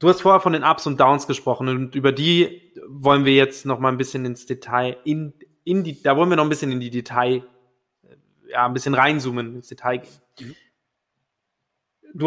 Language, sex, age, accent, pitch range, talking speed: German, male, 20-39, German, 135-155 Hz, 200 wpm